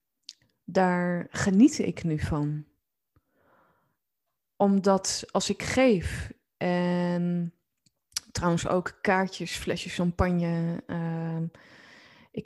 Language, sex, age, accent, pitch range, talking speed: Dutch, female, 20-39, Dutch, 170-215 Hz, 80 wpm